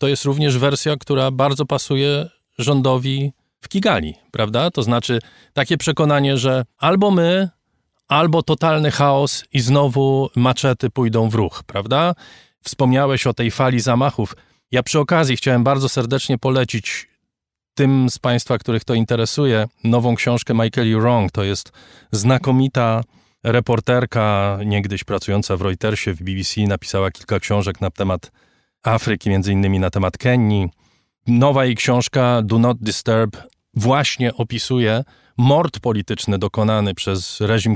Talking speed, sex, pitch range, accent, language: 135 wpm, male, 105-135 Hz, native, Polish